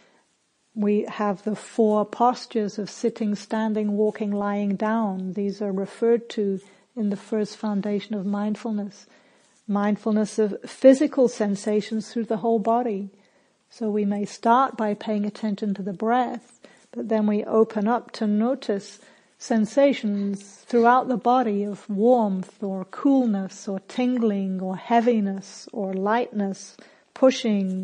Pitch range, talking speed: 205-230 Hz, 130 wpm